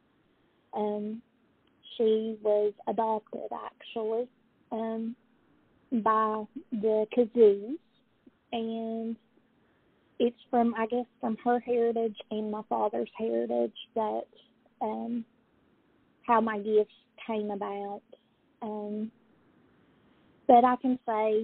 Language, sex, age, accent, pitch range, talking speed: English, female, 30-49, American, 205-235 Hz, 90 wpm